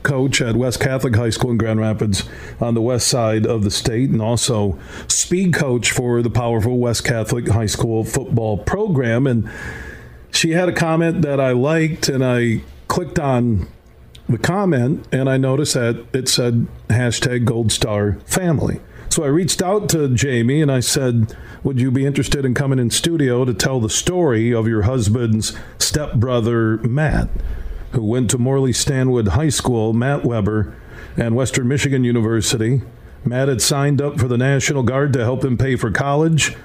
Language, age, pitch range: English, 50-69, 115-145 Hz